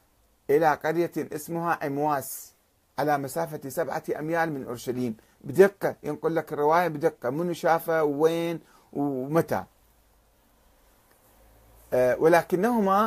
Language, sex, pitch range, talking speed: Arabic, male, 125-180 Hz, 90 wpm